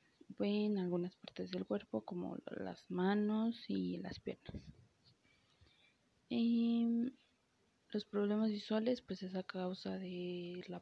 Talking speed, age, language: 115 wpm, 20-39, Spanish